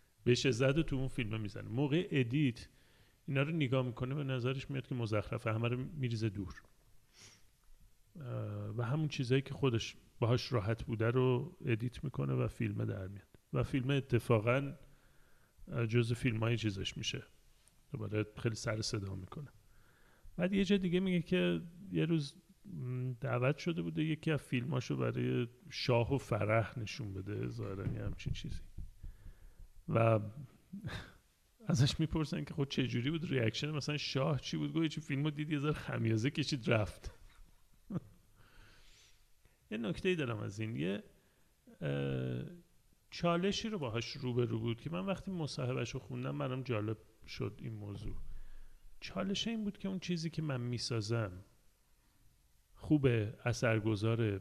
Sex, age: male, 40-59